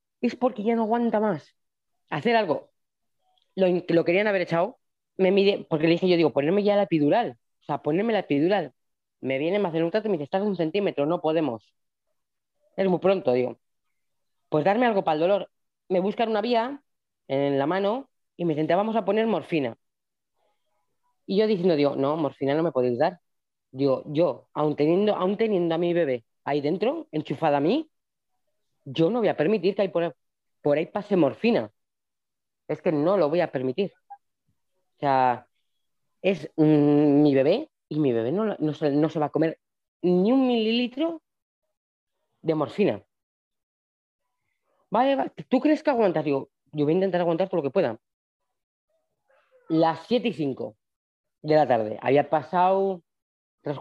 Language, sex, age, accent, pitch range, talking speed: Spanish, female, 20-39, Spanish, 150-215 Hz, 175 wpm